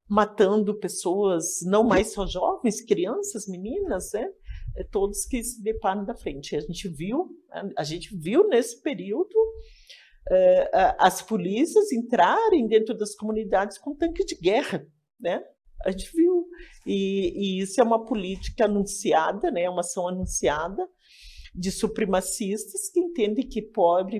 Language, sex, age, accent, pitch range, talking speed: Portuguese, male, 50-69, Brazilian, 190-305 Hz, 130 wpm